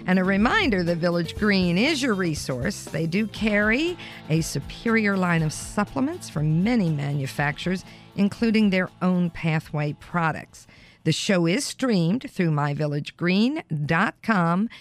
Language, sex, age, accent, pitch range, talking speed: English, female, 50-69, American, 155-215 Hz, 125 wpm